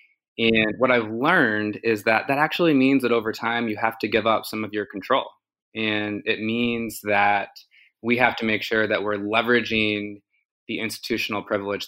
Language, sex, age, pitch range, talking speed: English, male, 20-39, 100-115 Hz, 180 wpm